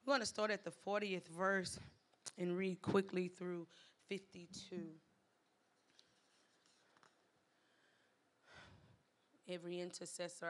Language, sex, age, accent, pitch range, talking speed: English, female, 30-49, American, 180-220 Hz, 85 wpm